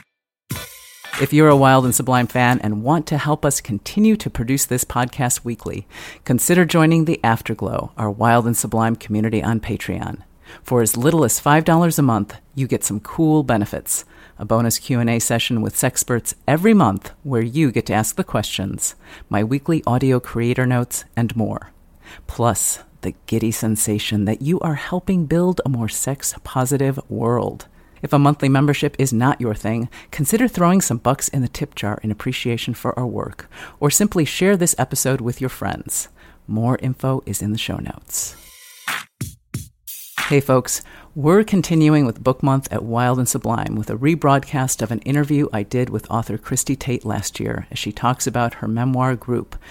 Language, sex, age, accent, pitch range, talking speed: English, female, 50-69, American, 115-145 Hz, 175 wpm